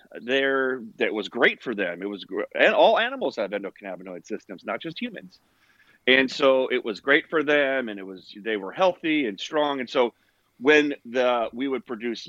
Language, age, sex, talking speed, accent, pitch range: English, 30-49, male, 190 wpm, American, 110-155 Hz